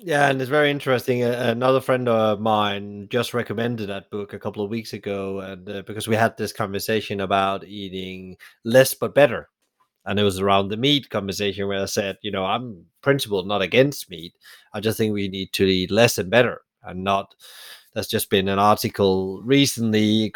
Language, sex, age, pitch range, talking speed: English, male, 30-49, 100-125 Hz, 195 wpm